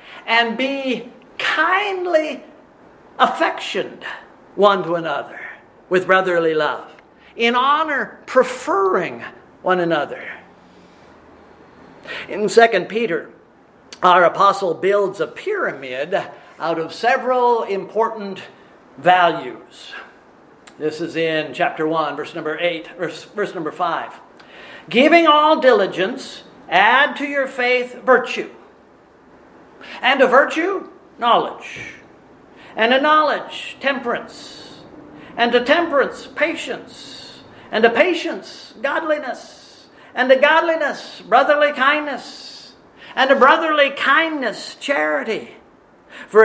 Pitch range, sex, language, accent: 180-290 Hz, male, English, American